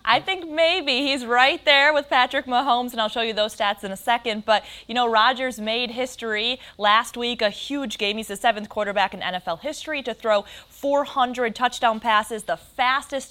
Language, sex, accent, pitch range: English, female, American, 205-255 Hz